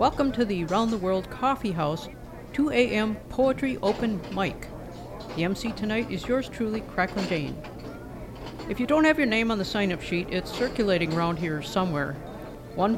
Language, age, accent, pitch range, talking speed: English, 50-69, American, 175-230 Hz, 165 wpm